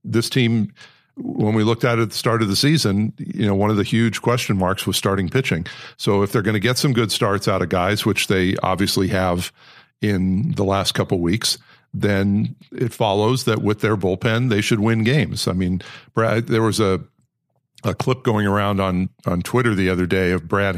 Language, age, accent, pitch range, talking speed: English, 50-69, American, 100-120 Hz, 215 wpm